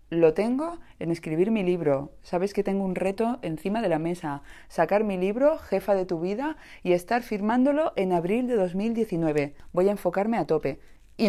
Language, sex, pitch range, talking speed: English, female, 160-220 Hz, 185 wpm